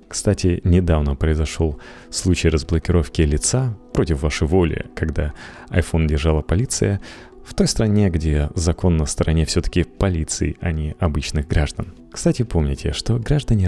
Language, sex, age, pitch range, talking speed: Russian, male, 30-49, 80-100 Hz, 130 wpm